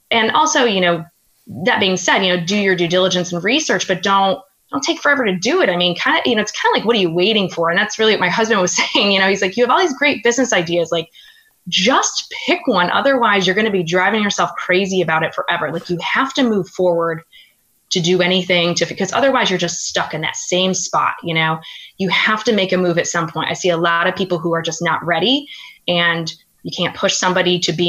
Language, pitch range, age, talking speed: English, 170-215 Hz, 20-39, 260 wpm